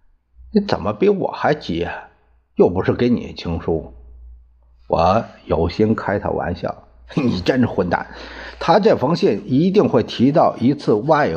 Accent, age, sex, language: native, 50-69, male, Chinese